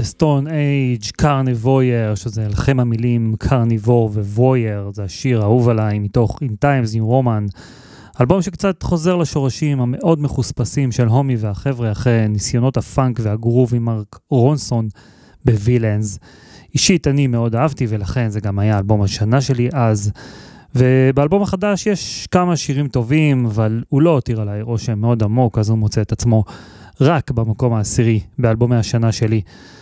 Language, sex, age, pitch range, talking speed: Hebrew, male, 30-49, 110-135 Hz, 145 wpm